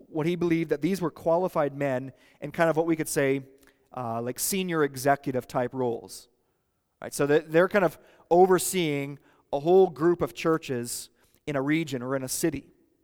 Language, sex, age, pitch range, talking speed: English, male, 30-49, 130-160 Hz, 180 wpm